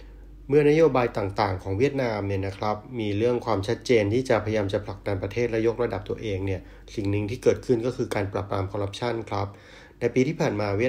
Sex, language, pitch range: male, Thai, 100-125 Hz